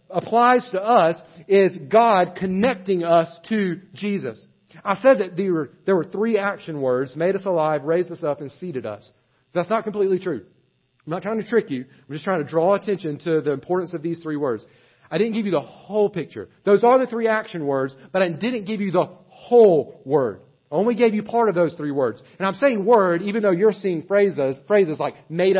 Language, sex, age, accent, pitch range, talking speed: English, male, 40-59, American, 155-210 Hz, 215 wpm